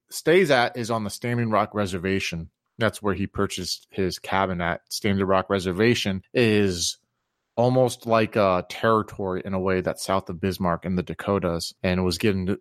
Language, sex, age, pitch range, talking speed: English, male, 30-49, 95-110 Hz, 175 wpm